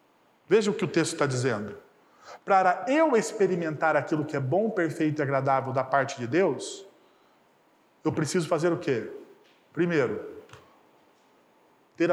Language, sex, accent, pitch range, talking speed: Portuguese, male, Brazilian, 165-250 Hz, 140 wpm